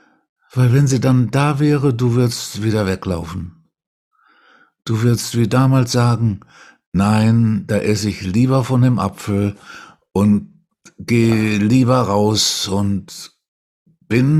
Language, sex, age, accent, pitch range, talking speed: German, male, 60-79, German, 120-180 Hz, 120 wpm